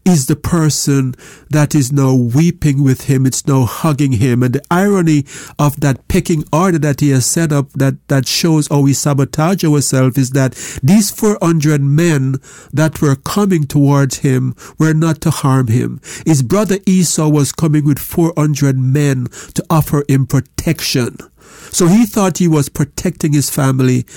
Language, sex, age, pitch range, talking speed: English, male, 60-79, 135-160 Hz, 165 wpm